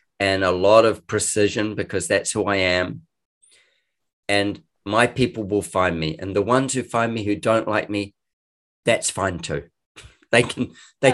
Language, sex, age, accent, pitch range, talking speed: English, male, 40-59, Australian, 90-115 Hz, 170 wpm